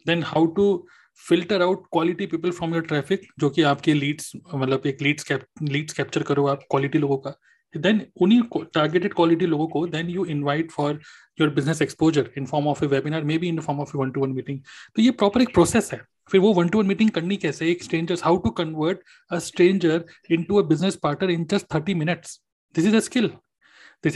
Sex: male